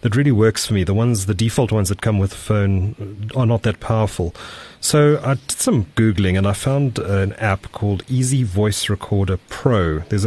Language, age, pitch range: English, 30-49, 90-110 Hz